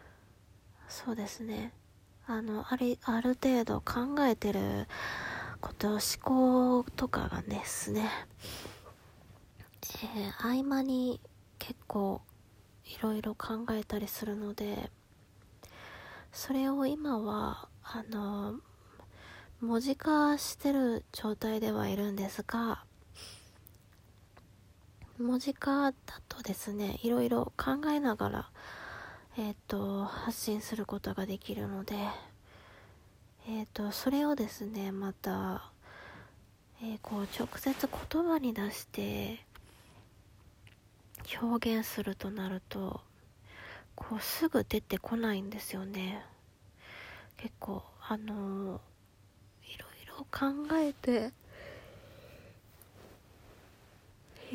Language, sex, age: Japanese, female, 20-39